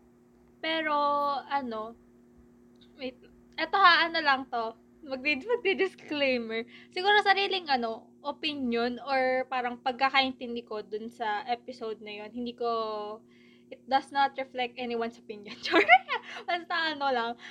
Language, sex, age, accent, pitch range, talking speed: Filipino, female, 20-39, native, 220-280 Hz, 120 wpm